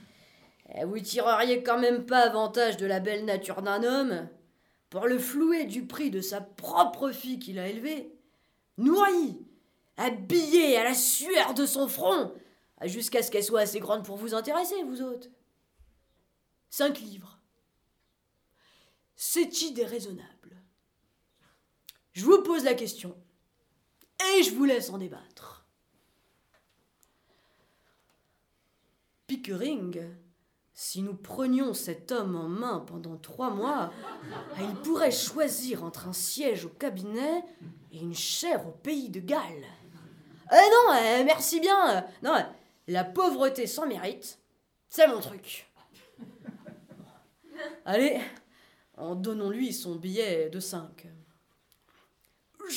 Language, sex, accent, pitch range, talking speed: French, female, French, 195-300 Hz, 125 wpm